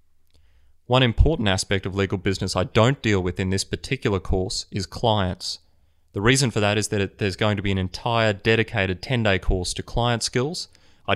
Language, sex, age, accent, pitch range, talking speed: English, male, 30-49, Australian, 90-110 Hz, 190 wpm